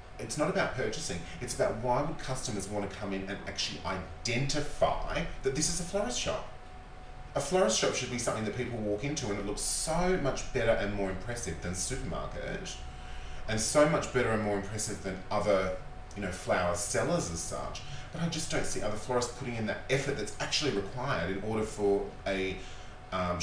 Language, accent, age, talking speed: English, Australian, 30-49, 195 wpm